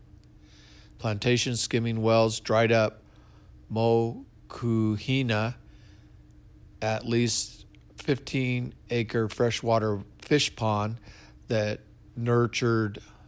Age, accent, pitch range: 50-69, American, 105-115 Hz